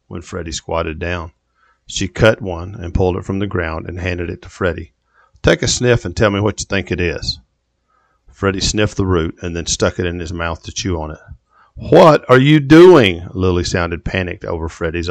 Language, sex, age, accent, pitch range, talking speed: English, male, 50-69, American, 85-105 Hz, 210 wpm